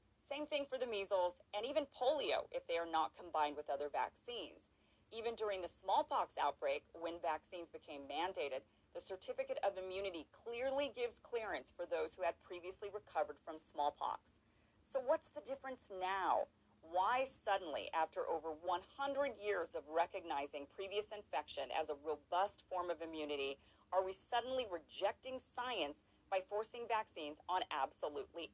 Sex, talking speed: female, 150 wpm